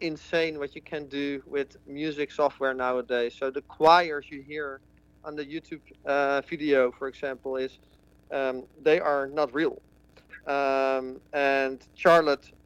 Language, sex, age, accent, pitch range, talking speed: English, male, 40-59, Dutch, 135-160 Hz, 140 wpm